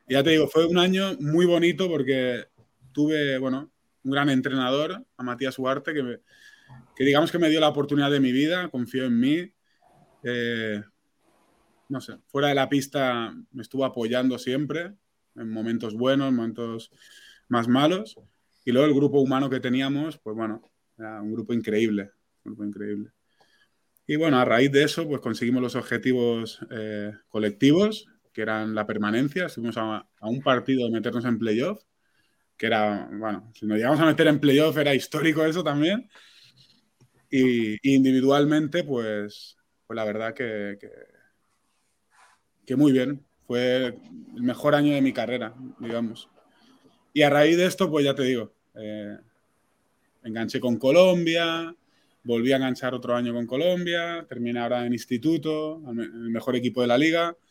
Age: 20-39